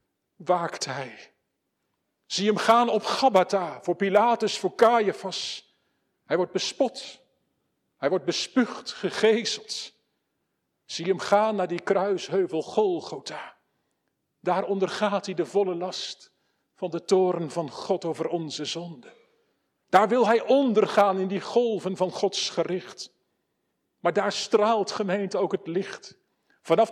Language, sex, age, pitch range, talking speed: Dutch, male, 50-69, 180-225 Hz, 125 wpm